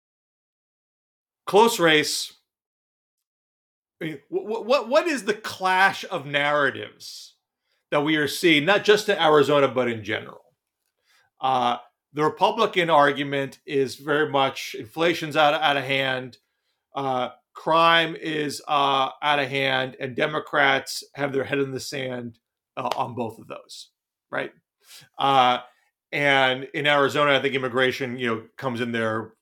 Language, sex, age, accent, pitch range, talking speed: English, male, 40-59, American, 135-170 Hz, 140 wpm